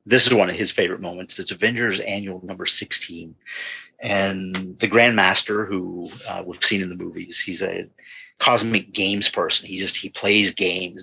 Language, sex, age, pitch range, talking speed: English, male, 50-69, 95-120 Hz, 175 wpm